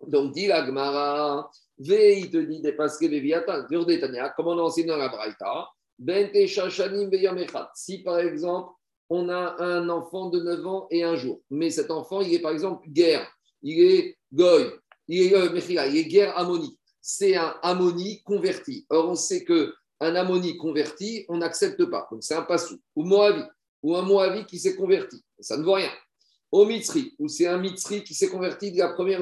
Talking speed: 205 wpm